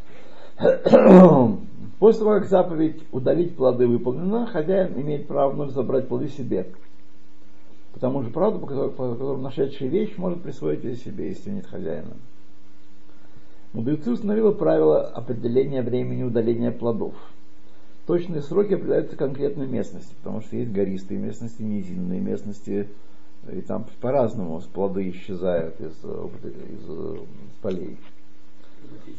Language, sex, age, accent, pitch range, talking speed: Russian, male, 50-69, native, 100-145 Hz, 115 wpm